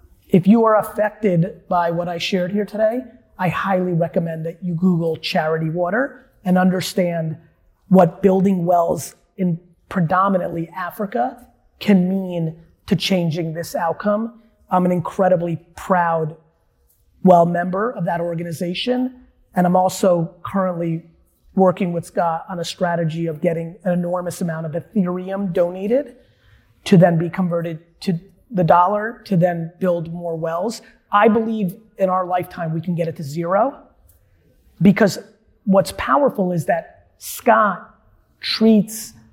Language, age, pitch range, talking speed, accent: English, 30-49, 170-200 Hz, 135 wpm, American